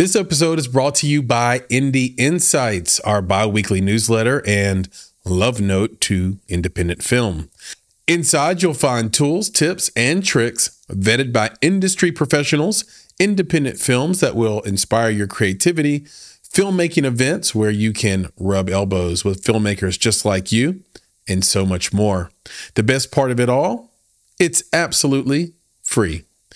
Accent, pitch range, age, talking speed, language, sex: American, 100-145 Hz, 40-59, 140 wpm, English, male